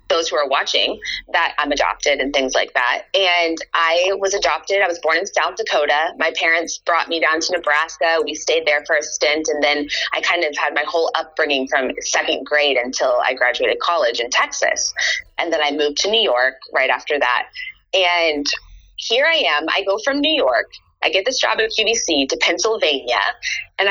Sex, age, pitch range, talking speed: female, 20-39, 155-220 Hz, 200 wpm